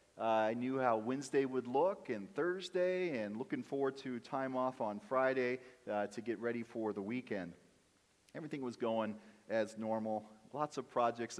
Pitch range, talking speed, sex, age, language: 105-135 Hz, 170 wpm, male, 40-59, English